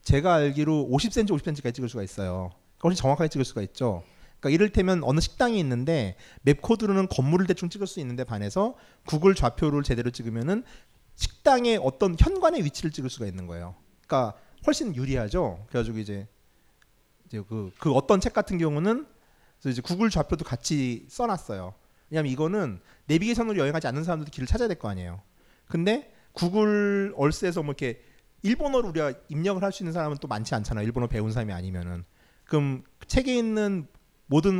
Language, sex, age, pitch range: Korean, male, 40-59, 120-195 Hz